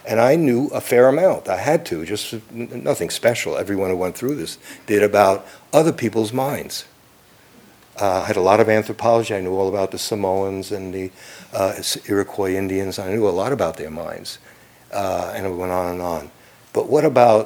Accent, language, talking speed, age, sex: American, English, 195 wpm, 60-79, male